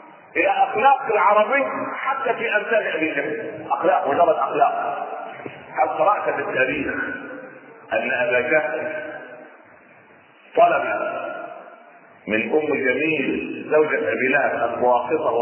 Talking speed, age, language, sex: 95 wpm, 40-59, Arabic, male